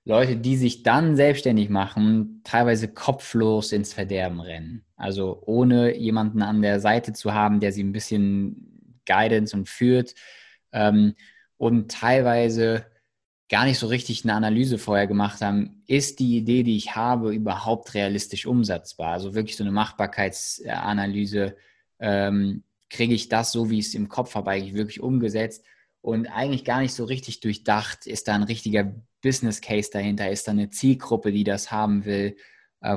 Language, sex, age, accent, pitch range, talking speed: German, male, 20-39, German, 105-120 Hz, 160 wpm